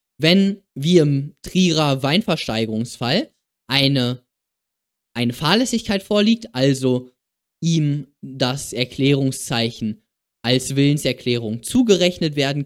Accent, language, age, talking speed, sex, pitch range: German, German, 20-39, 80 wpm, male, 130-175 Hz